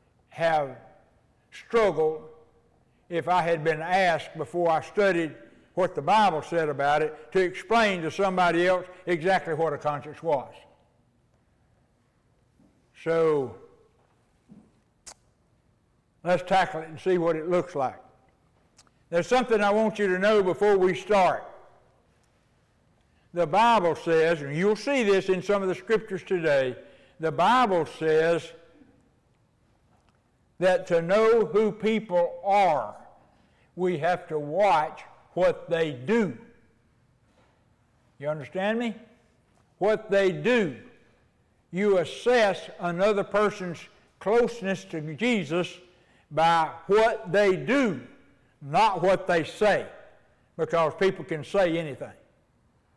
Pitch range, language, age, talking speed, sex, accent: 155-200 Hz, English, 60-79, 115 wpm, male, American